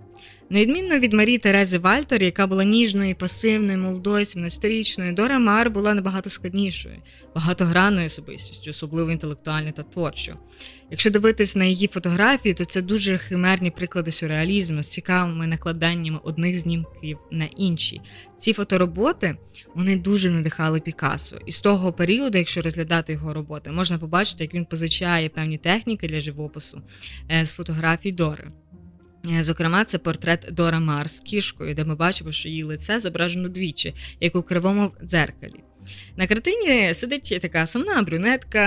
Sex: female